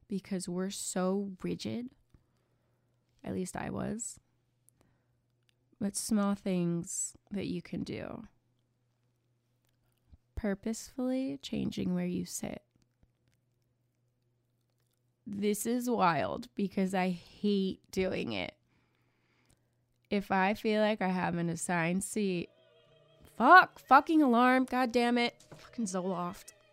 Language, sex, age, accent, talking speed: English, female, 20-39, American, 100 wpm